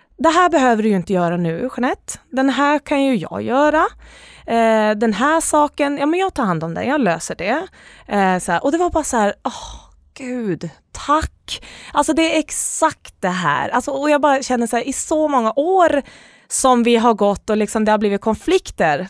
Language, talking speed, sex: Swedish, 205 wpm, female